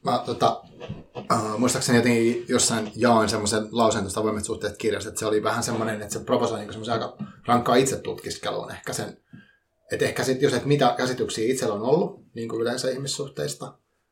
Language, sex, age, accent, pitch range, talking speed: Finnish, male, 30-49, native, 110-130 Hz, 180 wpm